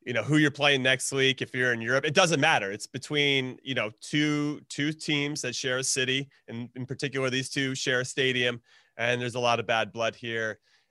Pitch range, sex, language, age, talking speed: 125-160 Hz, male, English, 30-49, 230 wpm